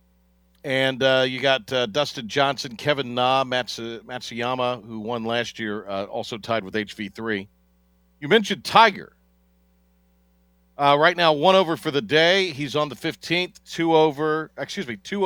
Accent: American